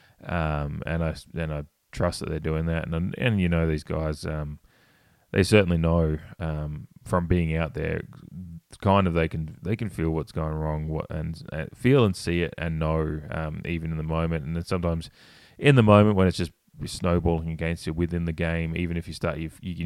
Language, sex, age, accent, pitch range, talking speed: English, male, 20-39, Australian, 80-95 Hz, 200 wpm